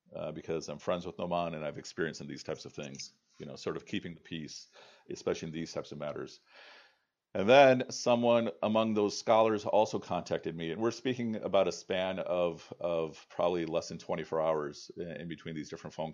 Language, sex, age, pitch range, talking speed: English, male, 40-59, 80-90 Hz, 200 wpm